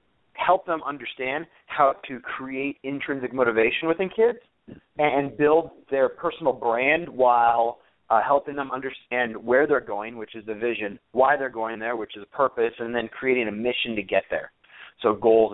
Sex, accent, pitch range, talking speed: male, American, 115-145 Hz, 175 wpm